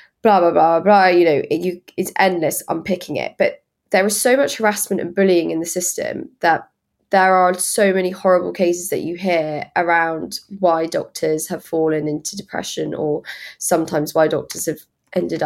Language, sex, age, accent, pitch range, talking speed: English, female, 20-39, British, 155-185 Hz, 185 wpm